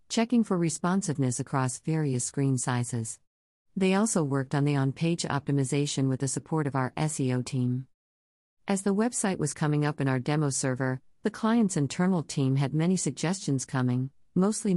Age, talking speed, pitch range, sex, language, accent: 50-69, 165 wpm, 130-165 Hz, female, English, American